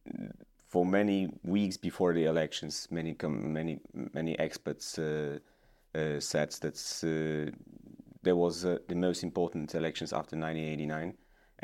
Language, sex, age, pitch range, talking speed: English, male, 30-49, 80-90 Hz, 125 wpm